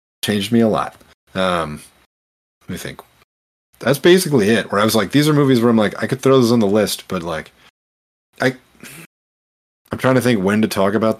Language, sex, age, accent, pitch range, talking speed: English, male, 30-49, American, 90-120 Hz, 210 wpm